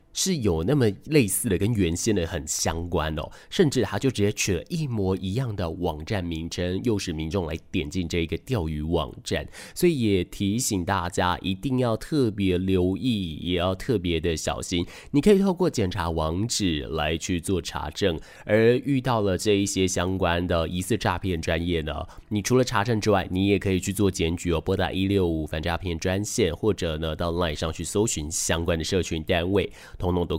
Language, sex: Chinese, male